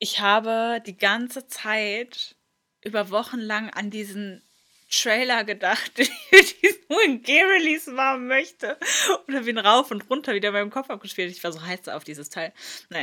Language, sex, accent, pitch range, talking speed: German, female, German, 180-220 Hz, 175 wpm